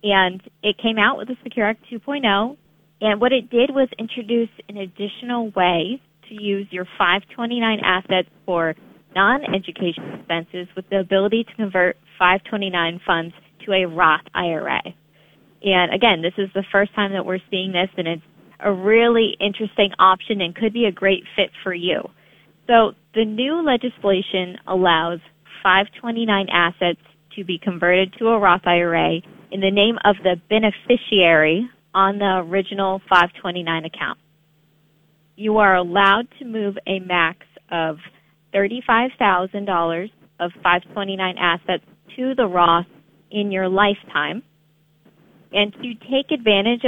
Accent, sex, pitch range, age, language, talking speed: American, female, 180-225 Hz, 20-39, English, 140 wpm